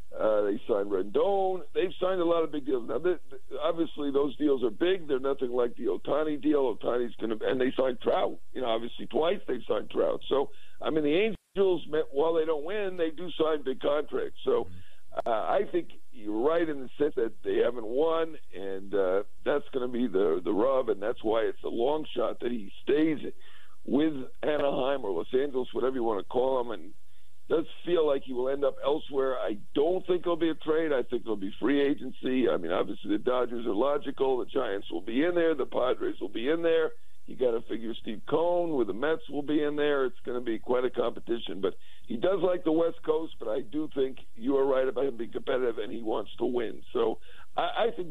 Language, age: English, 60-79